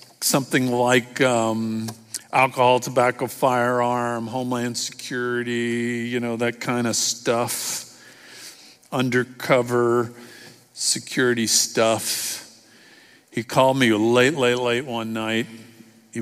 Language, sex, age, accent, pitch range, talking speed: English, male, 50-69, American, 105-120 Hz, 95 wpm